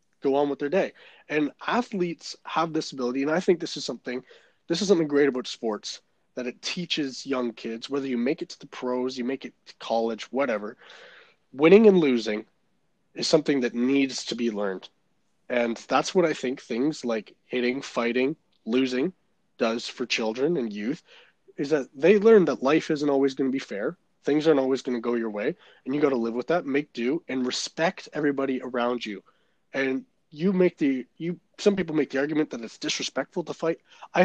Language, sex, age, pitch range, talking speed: English, male, 20-39, 125-165 Hz, 200 wpm